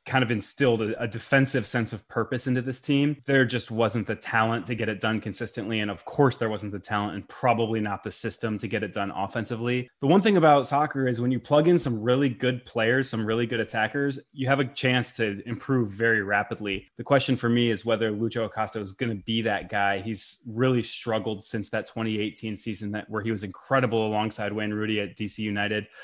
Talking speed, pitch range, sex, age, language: 220 wpm, 110-130 Hz, male, 20-39, English